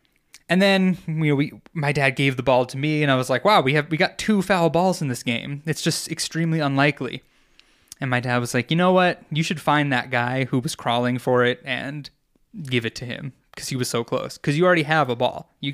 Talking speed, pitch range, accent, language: 250 wpm, 125-160 Hz, American, English